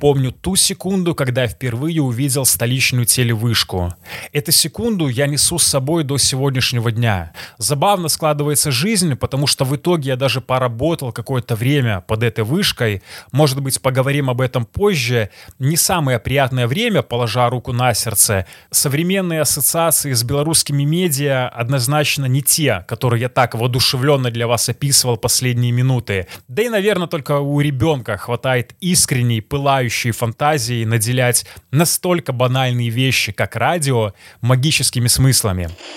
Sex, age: male, 20-39